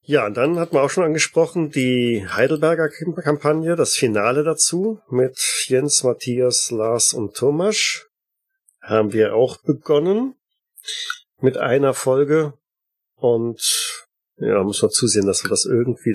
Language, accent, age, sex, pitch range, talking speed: German, German, 40-59, male, 110-155 Hz, 135 wpm